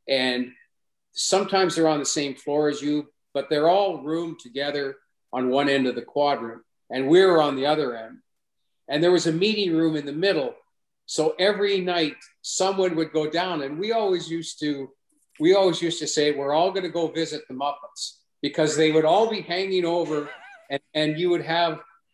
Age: 50-69